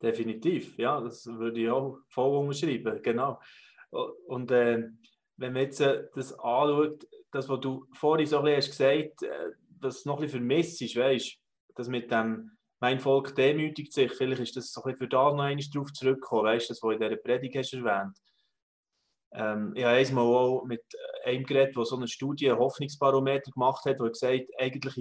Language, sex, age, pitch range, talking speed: German, male, 20-39, 120-145 Hz, 200 wpm